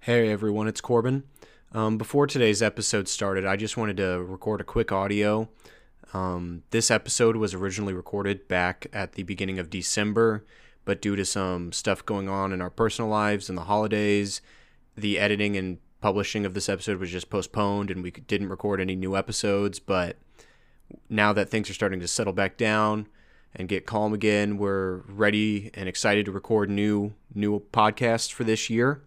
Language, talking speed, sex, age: English, 180 wpm, male, 20-39